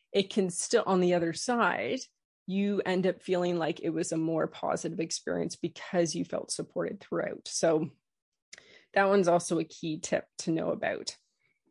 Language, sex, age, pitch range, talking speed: English, female, 20-39, 170-195 Hz, 170 wpm